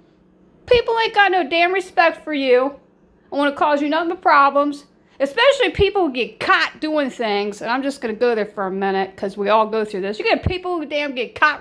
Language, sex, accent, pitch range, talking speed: English, female, American, 225-285 Hz, 225 wpm